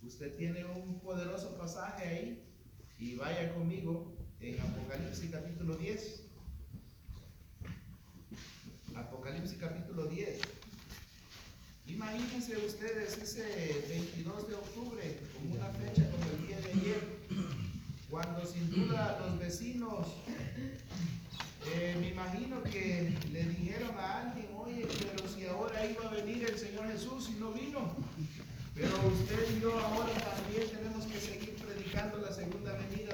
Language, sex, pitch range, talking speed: Spanish, male, 155-215 Hz, 125 wpm